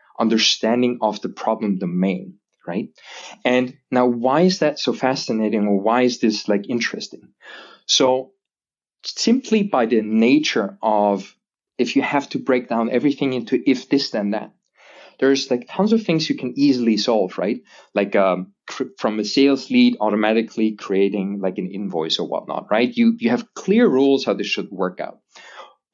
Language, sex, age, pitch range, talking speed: English, male, 30-49, 110-150 Hz, 165 wpm